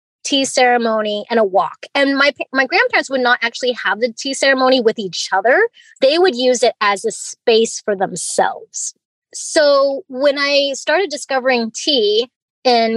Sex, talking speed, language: female, 160 wpm, English